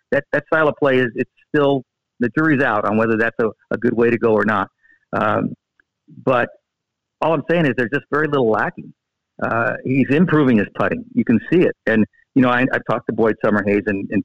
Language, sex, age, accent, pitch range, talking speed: English, male, 50-69, American, 120-140 Hz, 225 wpm